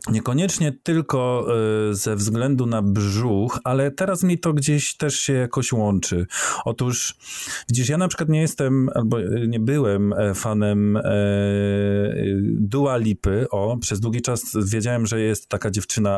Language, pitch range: Polish, 100-125 Hz